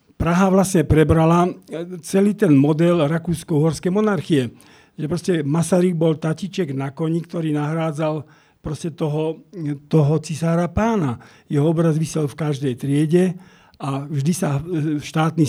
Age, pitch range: 50-69, 145-175 Hz